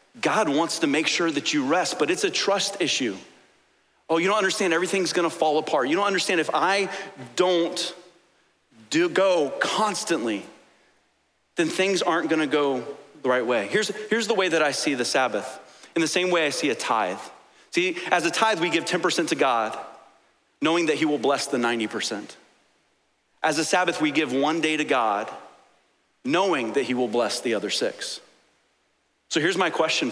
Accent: American